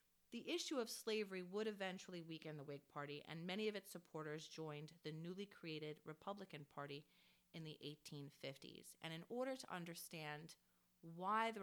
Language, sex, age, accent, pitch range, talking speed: English, female, 30-49, American, 150-185 Hz, 160 wpm